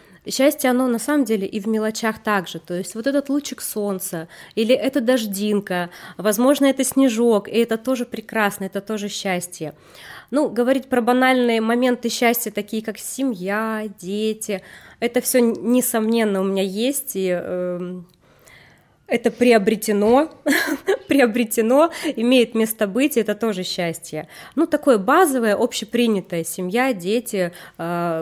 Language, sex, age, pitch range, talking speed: Russian, female, 20-39, 180-255 Hz, 130 wpm